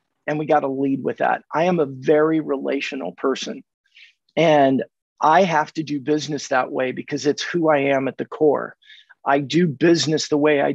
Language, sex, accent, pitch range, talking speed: English, male, American, 150-200 Hz, 195 wpm